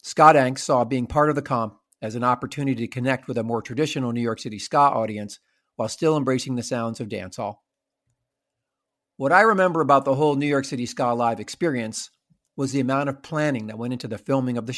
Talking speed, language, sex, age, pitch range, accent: 215 wpm, English, male, 50-69, 120-145 Hz, American